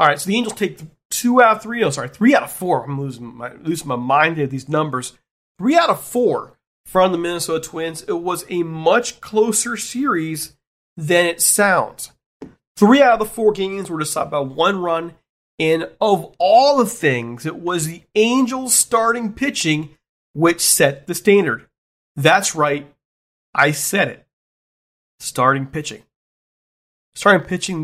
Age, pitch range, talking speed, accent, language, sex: 40-59, 150-200 Hz, 170 wpm, American, English, male